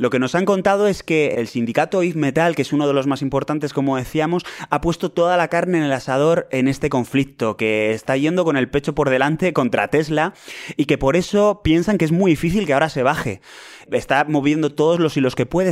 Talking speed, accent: 235 wpm, Spanish